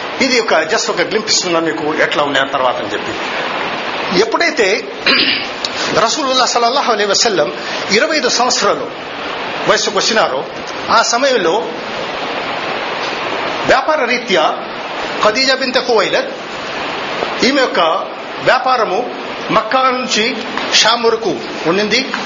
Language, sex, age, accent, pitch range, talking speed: Telugu, male, 50-69, native, 195-255 Hz, 90 wpm